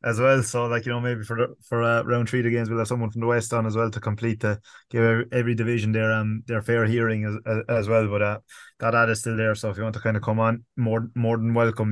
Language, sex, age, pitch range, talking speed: English, male, 20-39, 110-120 Hz, 305 wpm